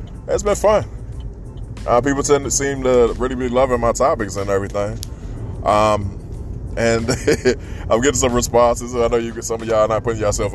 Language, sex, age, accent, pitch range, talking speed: English, male, 20-39, American, 100-120 Hz, 195 wpm